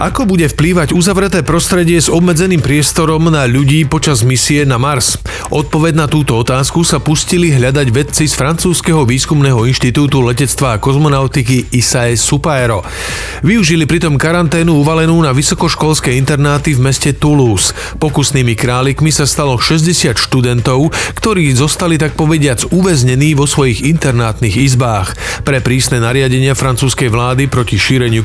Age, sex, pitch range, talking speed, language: 40-59, male, 125-160 Hz, 130 wpm, Slovak